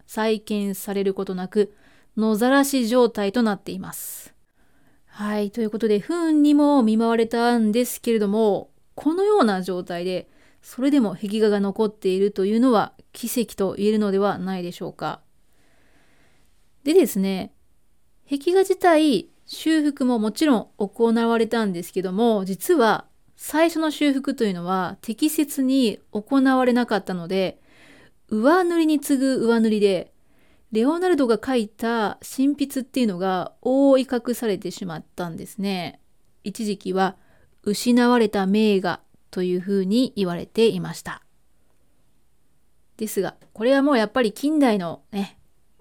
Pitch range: 195-260 Hz